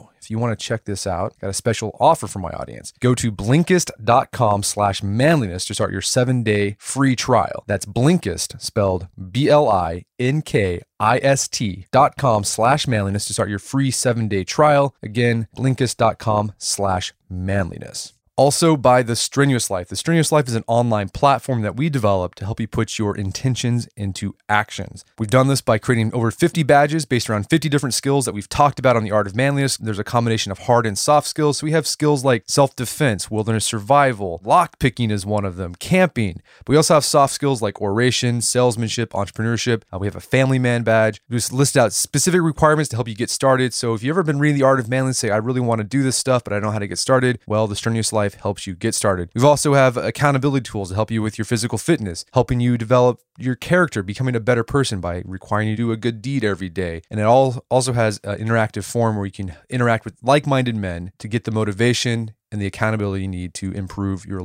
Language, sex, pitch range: English, male, 105-135 Hz